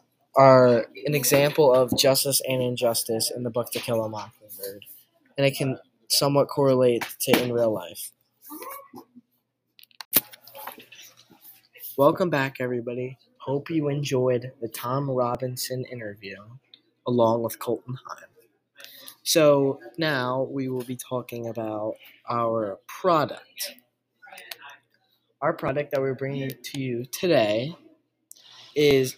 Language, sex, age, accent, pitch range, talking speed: English, male, 20-39, American, 125-150 Hz, 115 wpm